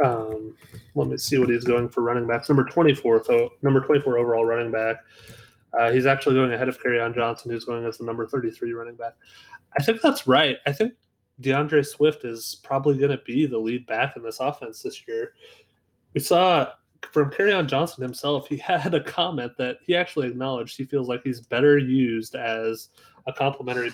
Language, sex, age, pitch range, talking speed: English, male, 20-39, 120-155 Hz, 200 wpm